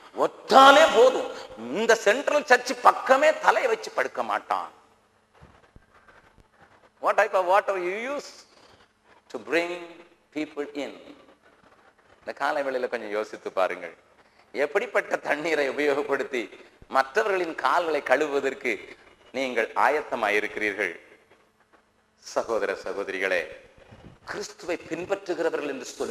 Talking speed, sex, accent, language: 55 wpm, male, Indian, English